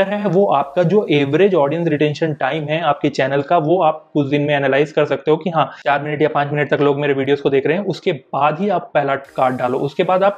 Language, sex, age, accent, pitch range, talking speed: Hindi, male, 30-49, native, 140-175 Hz, 235 wpm